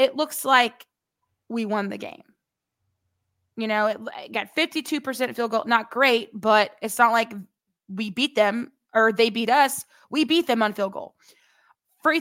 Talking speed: 170 wpm